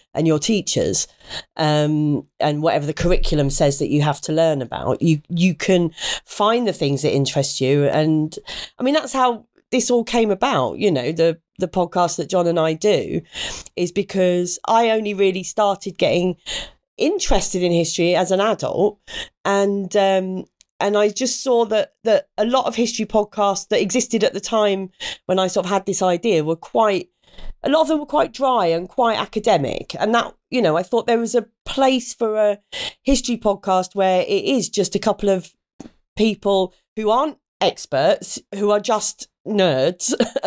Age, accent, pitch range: 40-59, British, 180-230 Hz